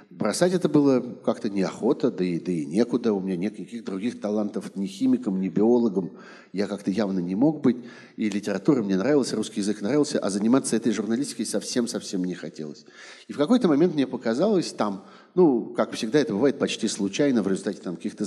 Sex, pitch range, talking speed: male, 95-140 Hz, 180 wpm